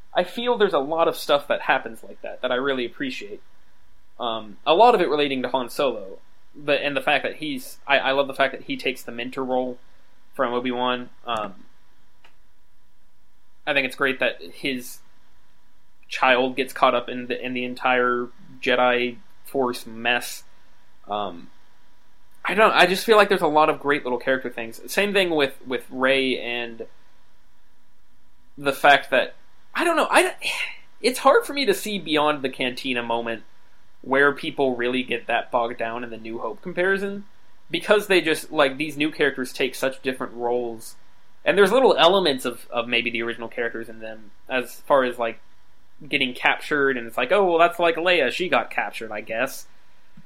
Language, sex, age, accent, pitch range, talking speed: English, male, 20-39, American, 120-170 Hz, 185 wpm